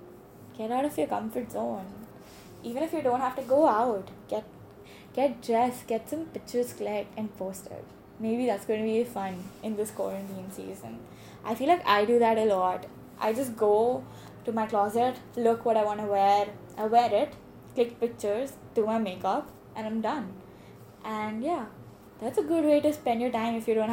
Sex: female